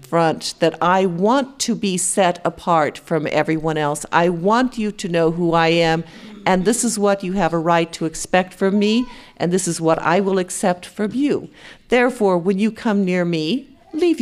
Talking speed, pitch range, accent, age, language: 200 wpm, 170-220 Hz, American, 50-69, English